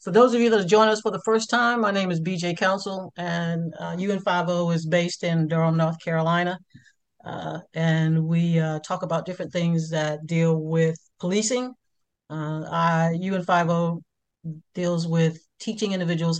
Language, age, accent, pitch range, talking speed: English, 40-59, American, 160-185 Hz, 160 wpm